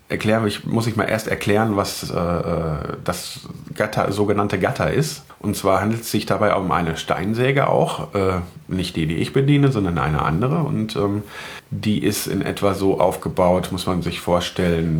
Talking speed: 185 wpm